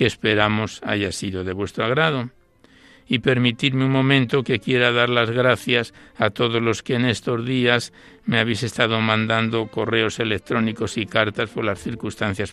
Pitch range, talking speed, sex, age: 105-125 Hz, 160 wpm, male, 60-79